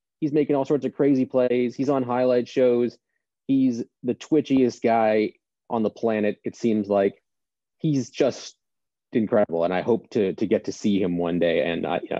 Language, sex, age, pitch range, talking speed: English, male, 30-49, 100-125 Hz, 185 wpm